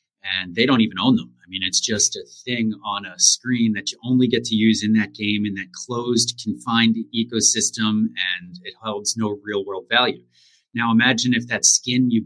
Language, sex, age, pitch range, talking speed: English, male, 30-49, 105-130 Hz, 205 wpm